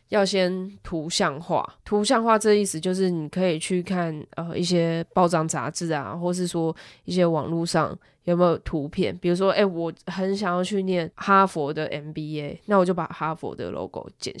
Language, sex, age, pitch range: Chinese, female, 10-29, 160-185 Hz